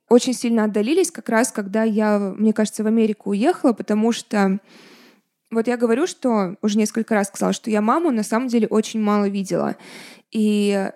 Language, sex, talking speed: Russian, female, 175 wpm